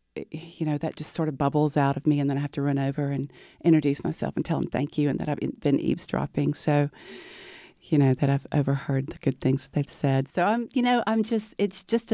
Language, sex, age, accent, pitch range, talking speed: English, female, 40-59, American, 150-185 Hz, 240 wpm